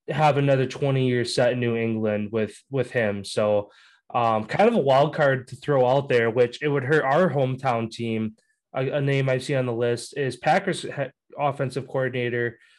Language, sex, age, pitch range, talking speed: English, male, 20-39, 125-145 Hz, 190 wpm